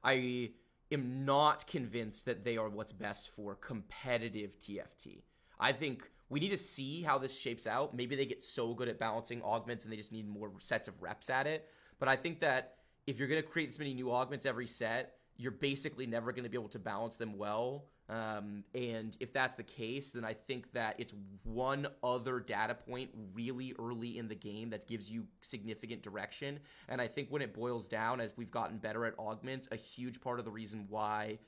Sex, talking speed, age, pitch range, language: male, 210 wpm, 20-39, 110-135 Hz, English